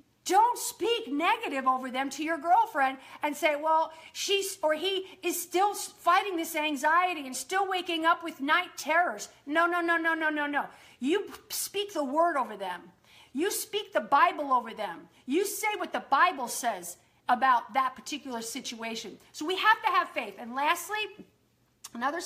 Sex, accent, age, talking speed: female, American, 50-69, 175 wpm